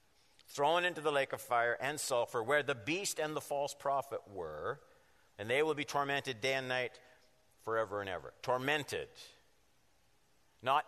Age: 50-69